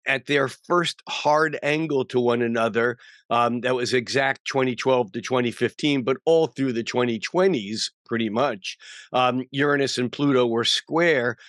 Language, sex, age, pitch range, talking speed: English, male, 50-69, 120-140 Hz, 145 wpm